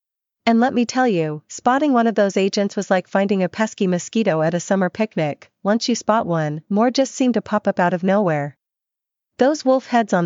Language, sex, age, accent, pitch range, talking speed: English, female, 40-59, American, 175-215 Hz, 215 wpm